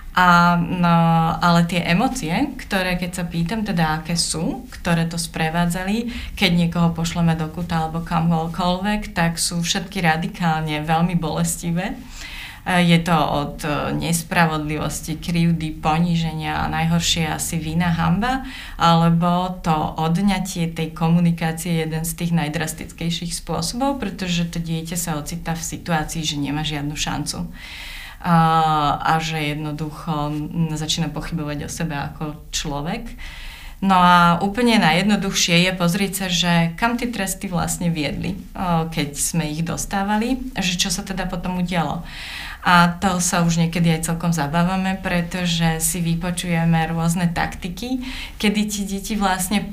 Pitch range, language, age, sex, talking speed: 160-185 Hz, Slovak, 30-49, female, 135 wpm